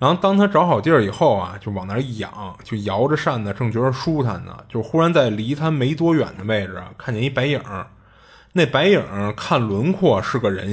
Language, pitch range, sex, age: Chinese, 105-135 Hz, male, 20-39